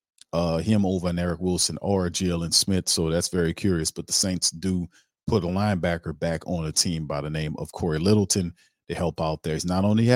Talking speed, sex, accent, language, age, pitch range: 225 wpm, male, American, English, 40-59, 85-95 Hz